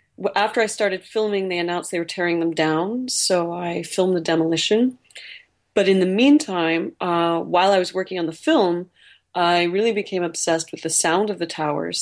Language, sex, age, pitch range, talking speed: English, female, 30-49, 165-200 Hz, 190 wpm